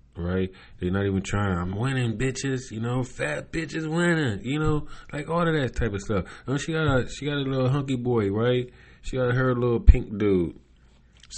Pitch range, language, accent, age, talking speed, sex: 70-100 Hz, English, American, 20-39, 205 wpm, male